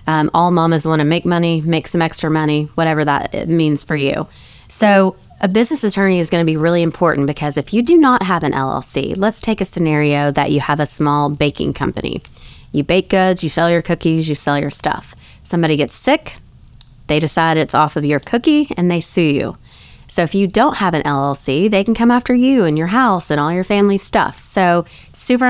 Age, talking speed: 20-39, 215 wpm